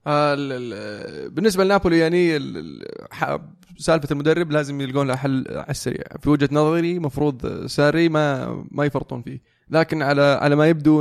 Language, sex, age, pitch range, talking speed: Arabic, male, 20-39, 130-150 Hz, 135 wpm